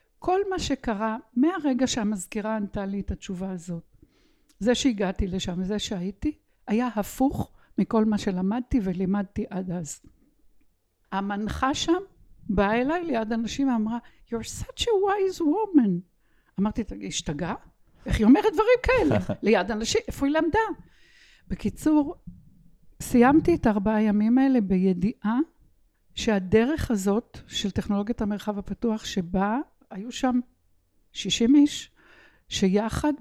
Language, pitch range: Hebrew, 195-260 Hz